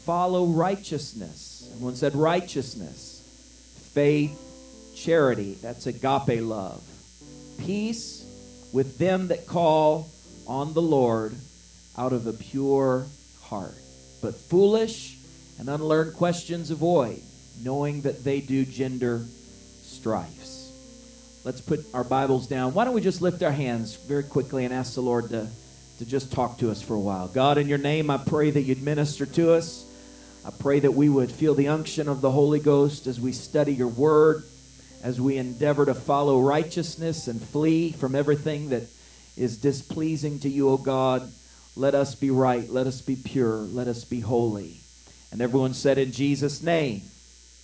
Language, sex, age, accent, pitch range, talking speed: English, male, 40-59, American, 115-150 Hz, 160 wpm